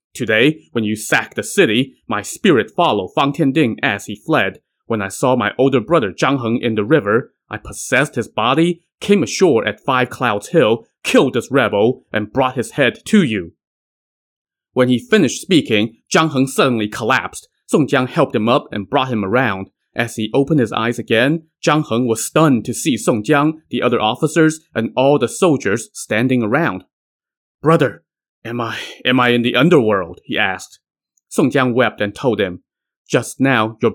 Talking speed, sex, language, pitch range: 185 wpm, male, English, 110-140 Hz